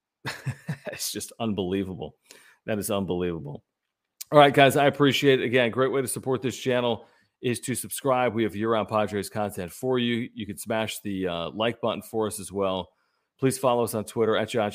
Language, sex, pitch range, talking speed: English, male, 100-125 Hz, 190 wpm